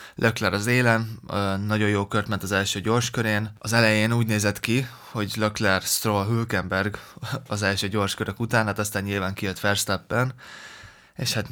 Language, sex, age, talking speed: Hungarian, male, 20-39, 155 wpm